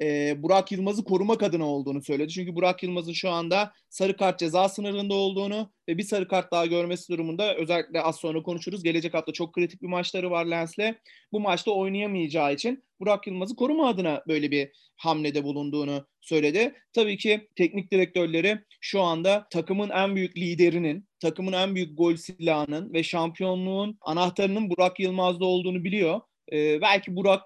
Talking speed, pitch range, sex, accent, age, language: 160 wpm, 155-190 Hz, male, native, 30-49, Turkish